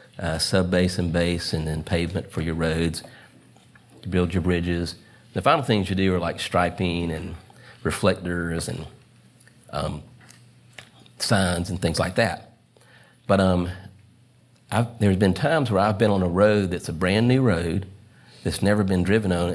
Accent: American